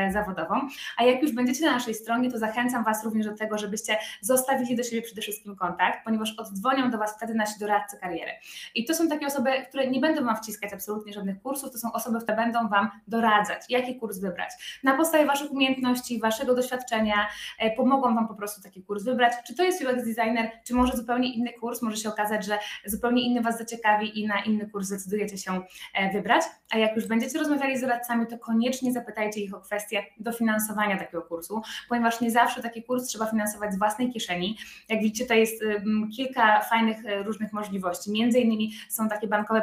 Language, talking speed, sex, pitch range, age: Polish, 195 wpm, female, 205-240 Hz, 20-39